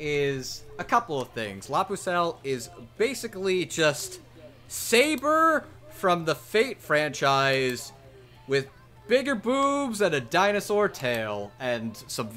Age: 30-49